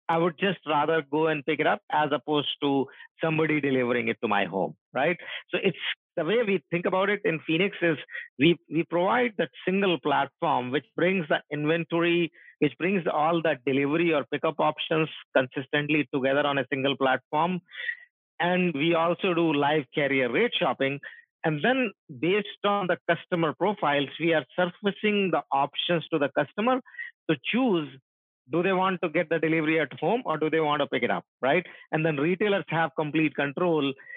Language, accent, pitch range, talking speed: English, Indian, 145-175 Hz, 180 wpm